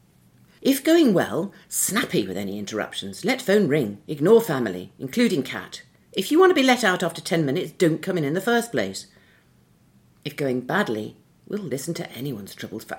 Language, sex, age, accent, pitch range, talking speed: English, female, 50-69, British, 105-160 Hz, 185 wpm